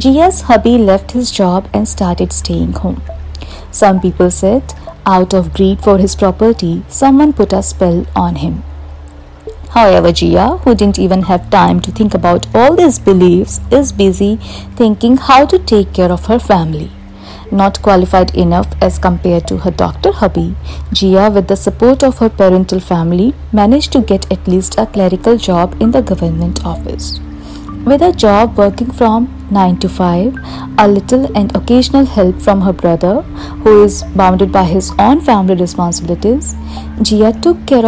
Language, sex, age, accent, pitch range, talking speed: English, female, 50-69, Indian, 175-220 Hz, 165 wpm